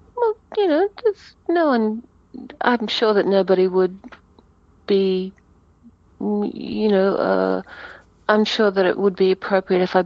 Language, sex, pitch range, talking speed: English, female, 180-225 Hz, 135 wpm